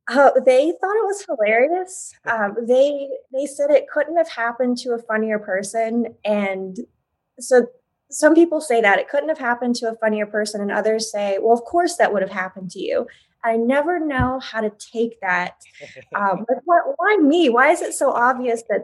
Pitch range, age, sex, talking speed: 205-245 Hz, 20-39, female, 200 wpm